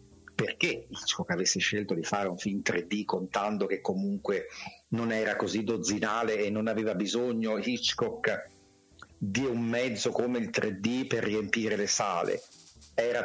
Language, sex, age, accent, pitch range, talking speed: Italian, male, 50-69, native, 110-150 Hz, 145 wpm